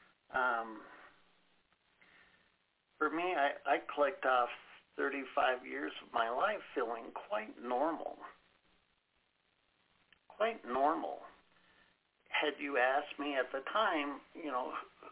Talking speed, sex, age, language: 105 wpm, male, 50-69, English